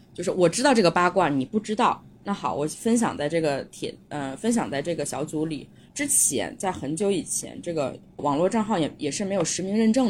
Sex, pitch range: female, 155-235 Hz